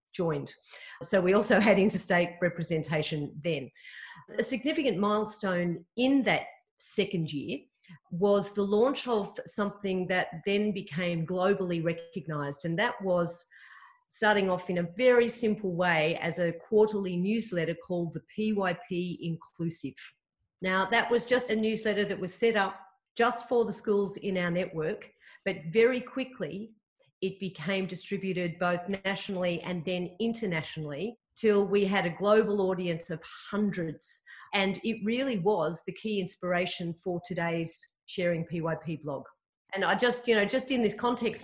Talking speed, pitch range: 145 wpm, 170-210 Hz